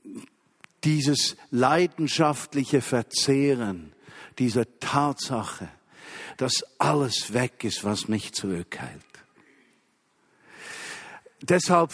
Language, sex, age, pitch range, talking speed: German, male, 50-69, 115-160 Hz, 65 wpm